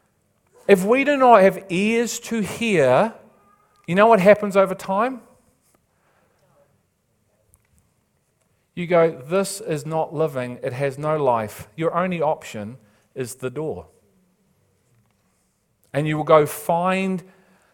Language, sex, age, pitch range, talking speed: English, male, 40-59, 130-190 Hz, 120 wpm